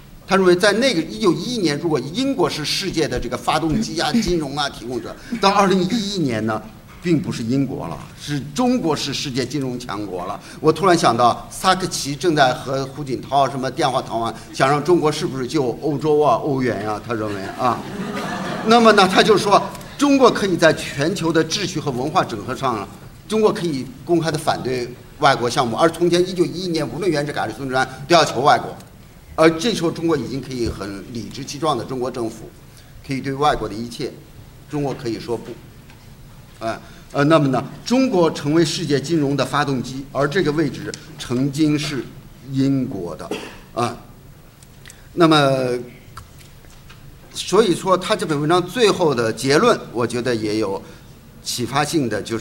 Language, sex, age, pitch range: Chinese, male, 50-69, 125-170 Hz